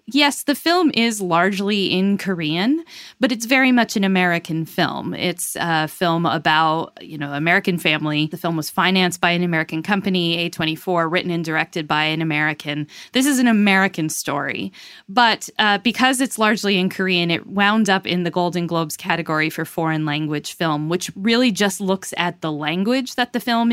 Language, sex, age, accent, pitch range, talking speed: English, female, 10-29, American, 160-205 Hz, 180 wpm